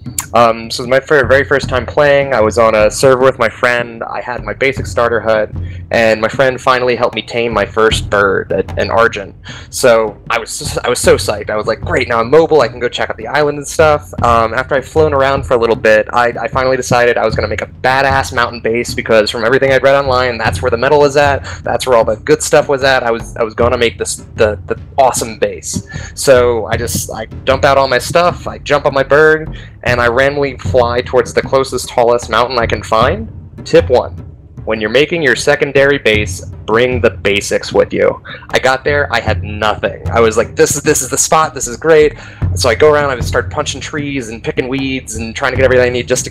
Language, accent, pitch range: English, American, 110-135 Hz